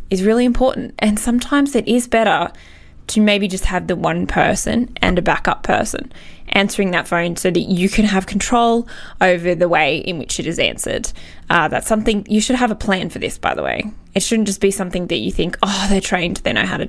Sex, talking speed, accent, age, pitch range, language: female, 225 wpm, Australian, 10-29, 185-235 Hz, English